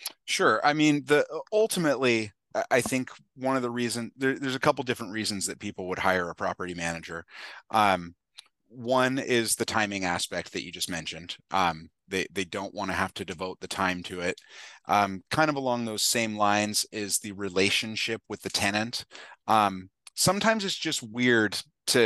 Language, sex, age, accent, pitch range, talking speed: English, male, 30-49, American, 95-120 Hz, 180 wpm